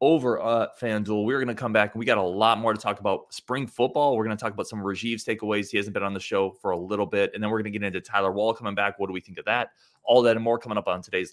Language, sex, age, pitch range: English, male, 20-39, 100-115 Hz